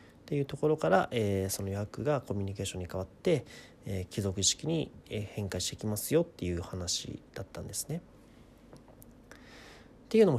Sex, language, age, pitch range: male, Japanese, 40-59, 95-130 Hz